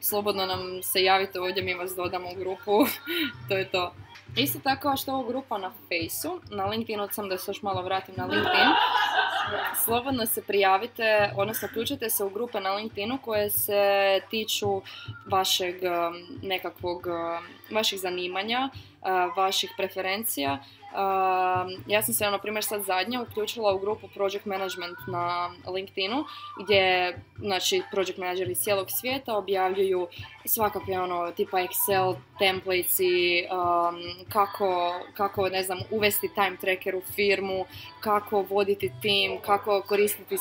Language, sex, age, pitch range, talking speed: Croatian, female, 20-39, 185-220 Hz, 135 wpm